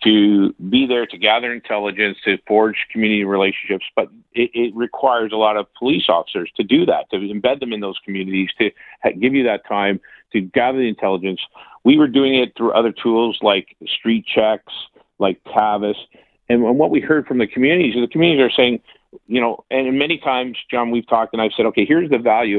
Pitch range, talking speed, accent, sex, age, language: 105-125 Hz, 200 wpm, American, male, 50-69, English